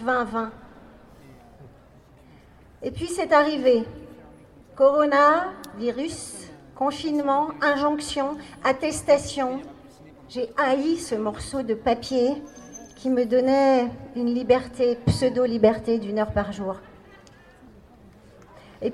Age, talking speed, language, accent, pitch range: 50-69, 85 wpm, French, French, 235-295 Hz